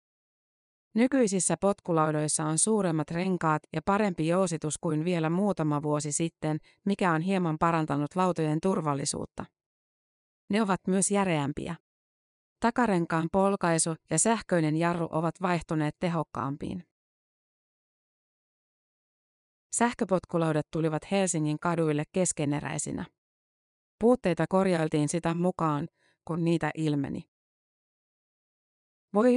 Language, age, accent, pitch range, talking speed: Finnish, 30-49, native, 155-185 Hz, 90 wpm